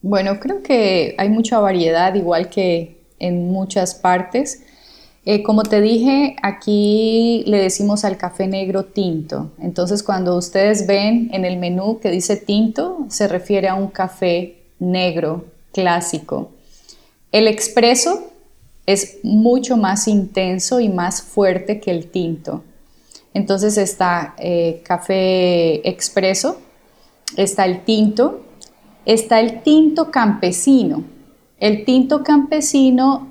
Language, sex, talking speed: English, female, 120 wpm